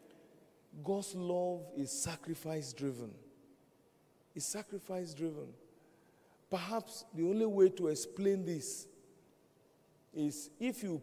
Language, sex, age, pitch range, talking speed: English, male, 50-69, 155-195 Hz, 85 wpm